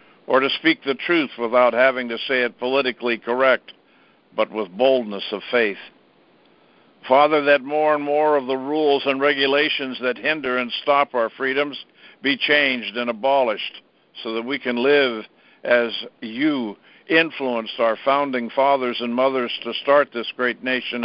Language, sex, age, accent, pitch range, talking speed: English, male, 60-79, American, 120-145 Hz, 155 wpm